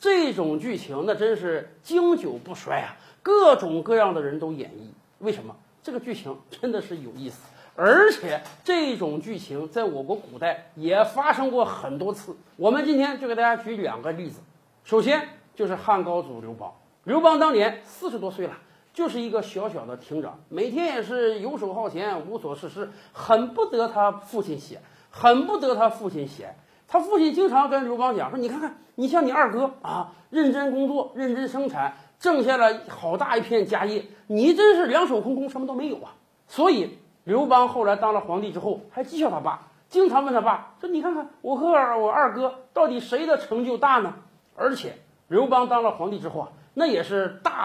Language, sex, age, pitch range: Chinese, male, 50-69, 200-290 Hz